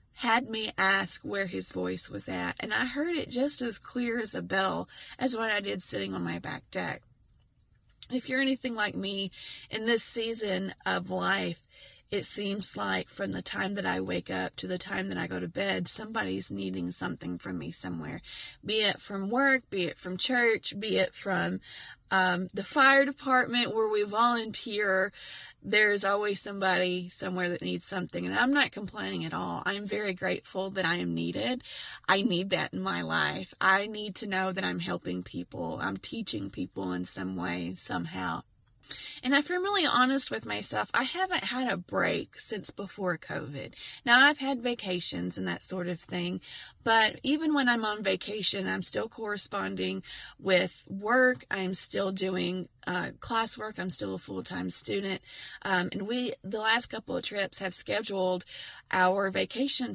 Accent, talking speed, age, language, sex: American, 180 wpm, 20-39, English, female